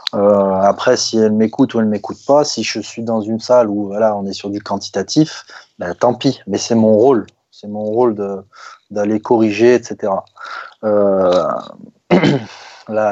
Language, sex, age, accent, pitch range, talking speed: French, male, 20-39, French, 105-125 Hz, 175 wpm